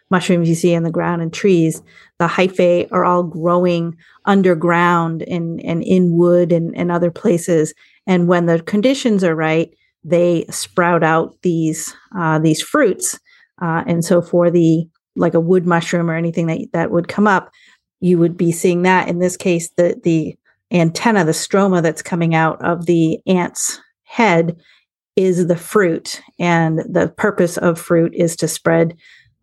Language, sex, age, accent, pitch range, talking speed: English, female, 40-59, American, 165-180 Hz, 165 wpm